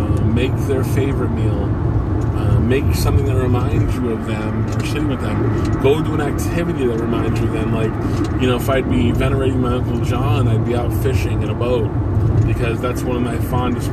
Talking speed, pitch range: 205 wpm, 110-125 Hz